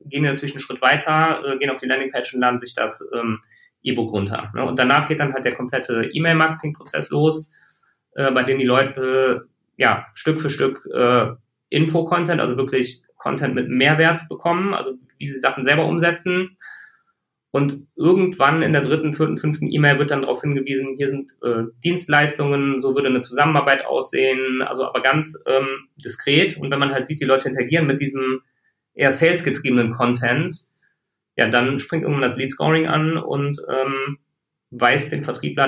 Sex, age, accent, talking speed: male, 20-39, German, 170 wpm